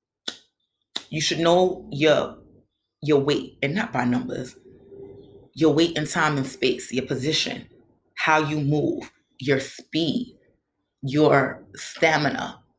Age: 30-49